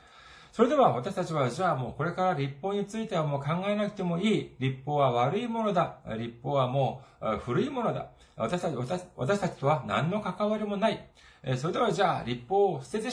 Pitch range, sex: 135-200 Hz, male